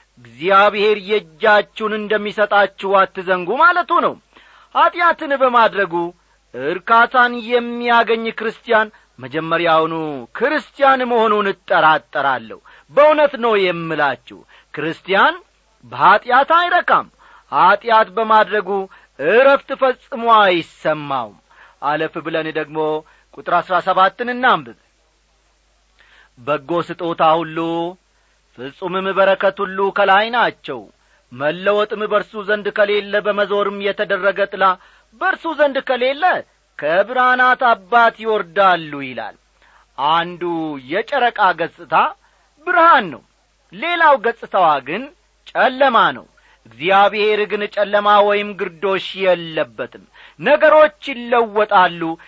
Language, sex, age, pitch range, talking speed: Amharic, male, 40-59, 170-235 Hz, 85 wpm